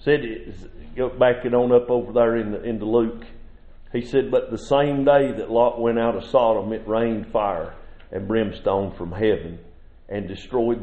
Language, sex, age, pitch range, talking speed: English, male, 50-69, 105-130 Hz, 190 wpm